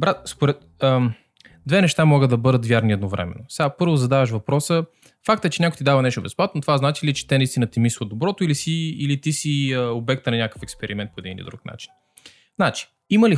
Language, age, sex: Bulgarian, 20-39, male